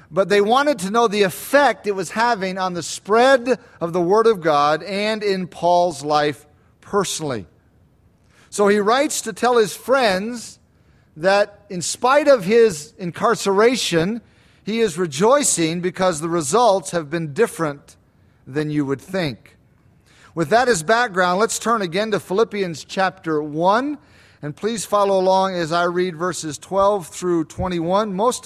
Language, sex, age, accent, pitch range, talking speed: English, male, 40-59, American, 160-215 Hz, 150 wpm